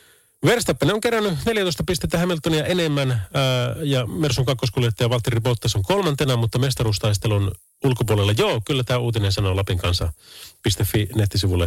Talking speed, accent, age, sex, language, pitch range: 130 wpm, native, 30-49, male, Finnish, 90-130 Hz